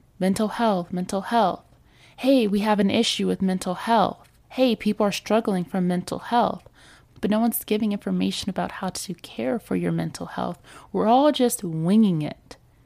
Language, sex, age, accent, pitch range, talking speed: English, female, 20-39, American, 155-210 Hz, 175 wpm